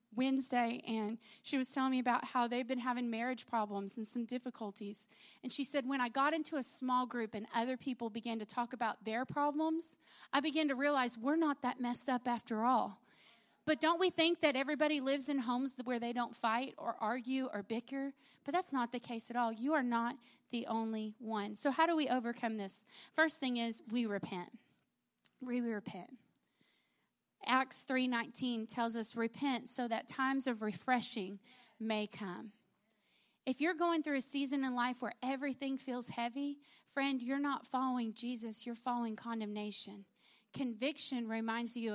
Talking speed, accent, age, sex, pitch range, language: 180 wpm, American, 30-49, female, 225-270 Hz, English